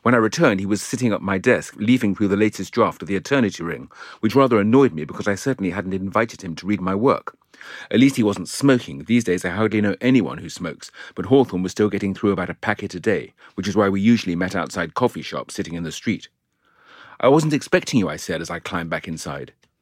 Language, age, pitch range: English, 40-59, 95-125 Hz